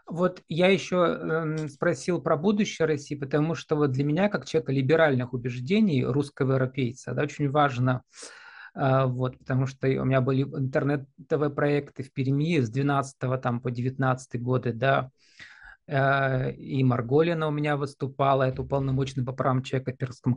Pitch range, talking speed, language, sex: 130-165 Hz, 140 wpm, Russian, male